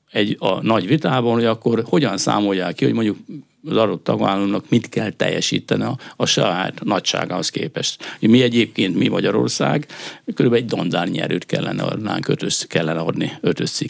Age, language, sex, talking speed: 60-79, Hungarian, male, 145 wpm